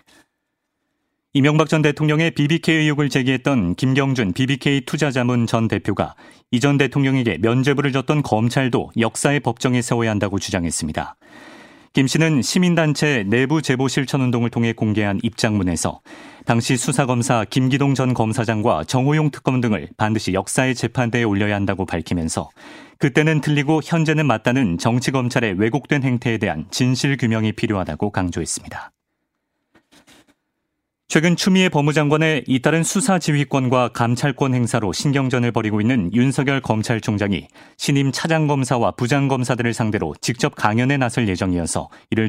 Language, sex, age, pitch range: Korean, male, 40-59, 110-145 Hz